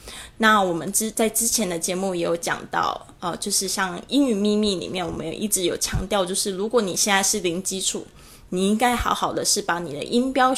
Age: 20-39